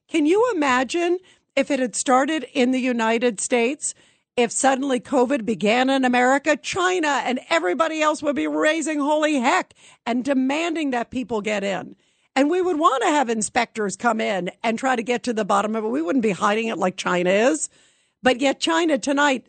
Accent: American